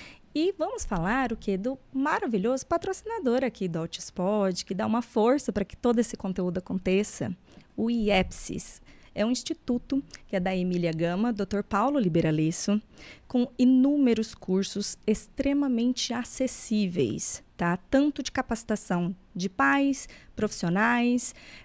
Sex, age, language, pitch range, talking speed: female, 20-39, Portuguese, 190-250 Hz, 125 wpm